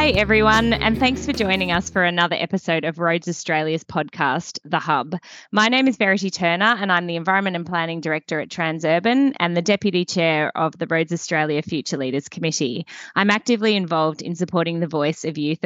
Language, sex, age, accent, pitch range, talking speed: English, female, 20-39, Australian, 160-200 Hz, 190 wpm